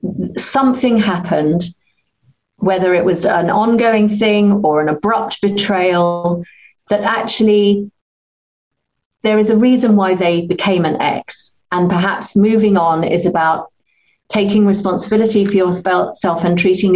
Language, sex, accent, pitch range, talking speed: English, female, British, 175-210 Hz, 125 wpm